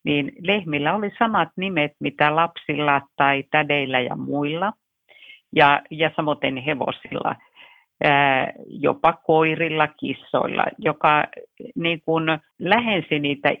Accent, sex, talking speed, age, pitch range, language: native, female, 95 wpm, 50-69, 145-185 Hz, Finnish